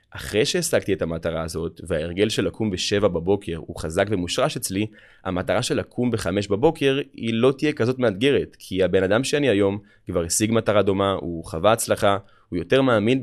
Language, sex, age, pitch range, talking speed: Hebrew, male, 20-39, 90-110 Hz, 175 wpm